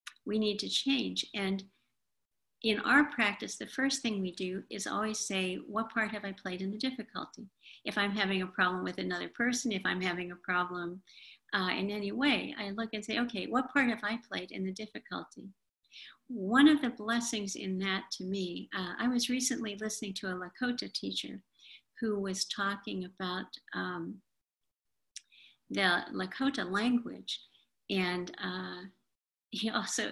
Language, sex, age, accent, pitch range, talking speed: English, female, 50-69, American, 190-230 Hz, 165 wpm